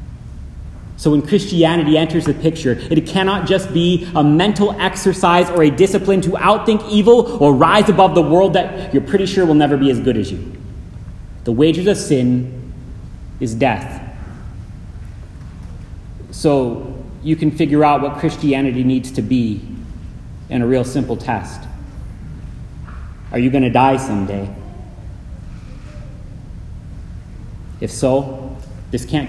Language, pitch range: English, 100-155 Hz